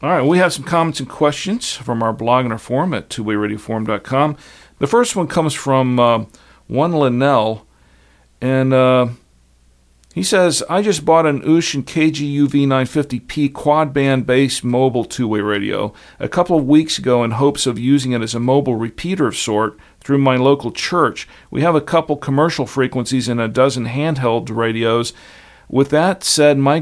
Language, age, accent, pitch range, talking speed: English, 50-69, American, 115-140 Hz, 165 wpm